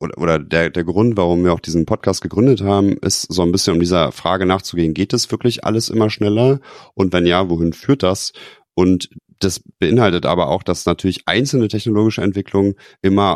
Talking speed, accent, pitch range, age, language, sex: 190 wpm, German, 85-105 Hz, 30-49, English, male